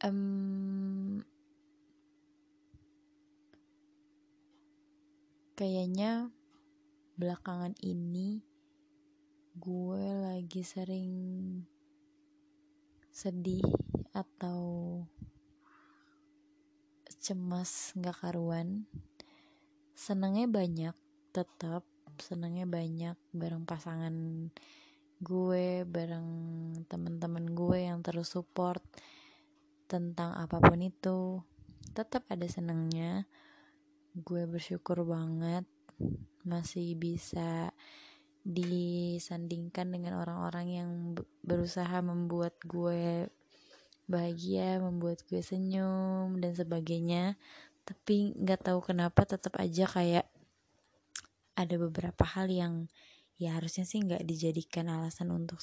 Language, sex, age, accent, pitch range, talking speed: Indonesian, female, 20-39, native, 170-225 Hz, 75 wpm